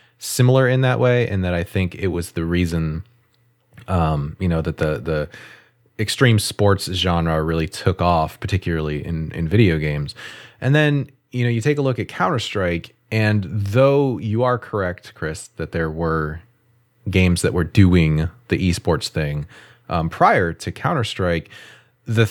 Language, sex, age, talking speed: English, male, 30-49, 160 wpm